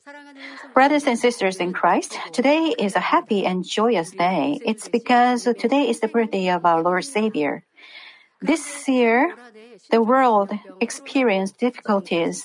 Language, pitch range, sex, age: Korean, 195-250 Hz, female, 50-69